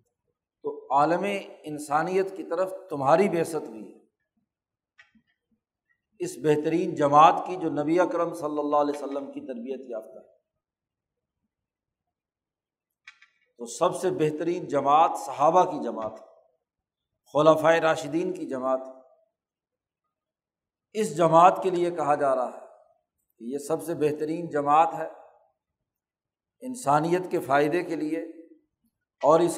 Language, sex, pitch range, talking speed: Urdu, male, 150-190 Hz, 115 wpm